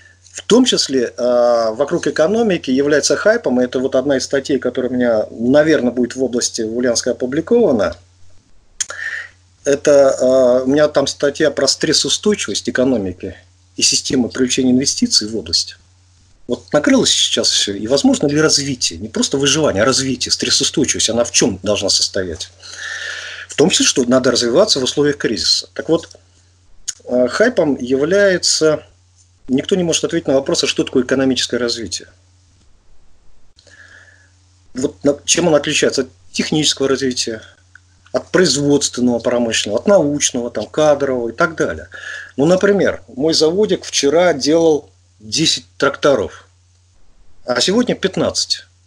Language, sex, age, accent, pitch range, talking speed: Russian, male, 40-59, native, 90-145 Hz, 135 wpm